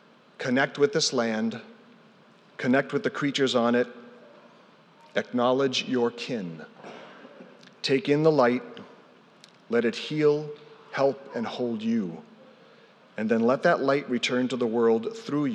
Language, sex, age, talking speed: English, male, 40-59, 130 wpm